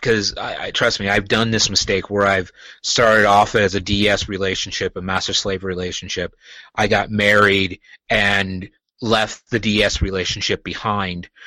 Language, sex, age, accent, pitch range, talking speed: English, male, 30-49, American, 95-110 Hz, 155 wpm